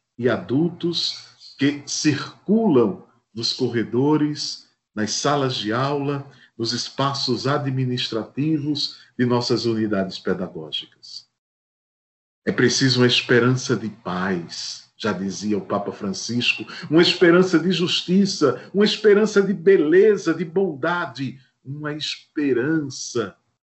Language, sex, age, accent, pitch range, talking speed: Portuguese, male, 50-69, Brazilian, 120-175 Hz, 100 wpm